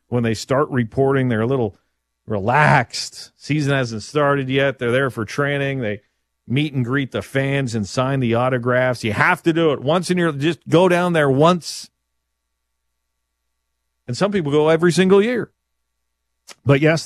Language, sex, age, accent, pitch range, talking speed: English, male, 40-59, American, 95-140 Hz, 170 wpm